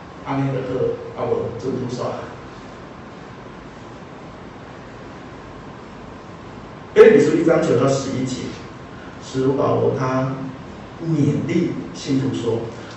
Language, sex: Chinese, male